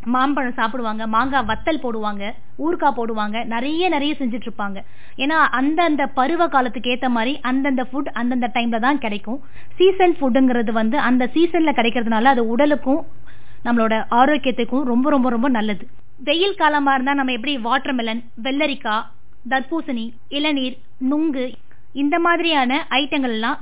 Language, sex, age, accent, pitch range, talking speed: Tamil, female, 20-39, native, 245-295 Hz, 125 wpm